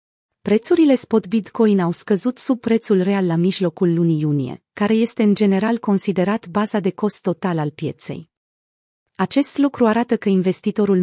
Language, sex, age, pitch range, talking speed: Romanian, female, 30-49, 175-225 Hz, 150 wpm